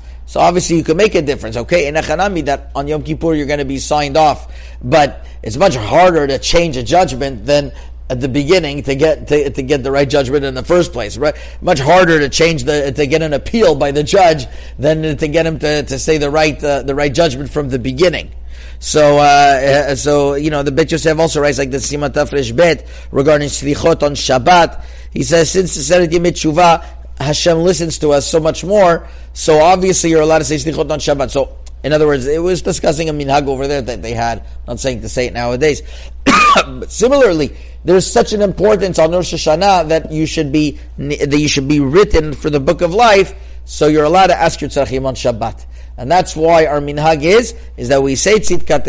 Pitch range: 135-165 Hz